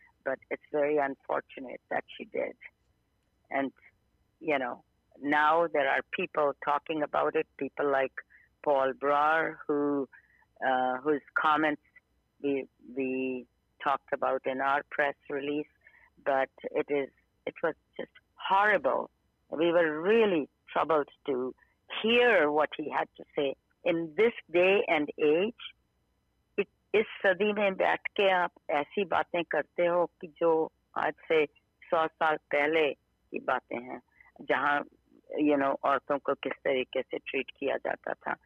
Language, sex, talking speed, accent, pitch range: English, female, 90 wpm, Indian, 145-195 Hz